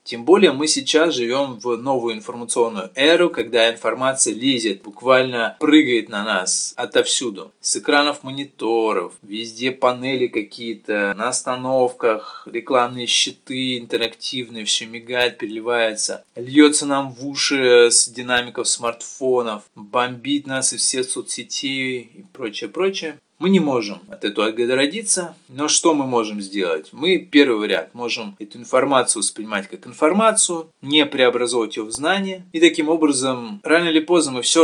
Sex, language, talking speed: male, Russian, 135 wpm